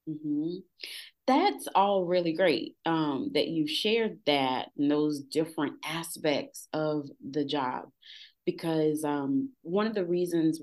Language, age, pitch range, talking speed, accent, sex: English, 30-49, 150-200 Hz, 130 wpm, American, female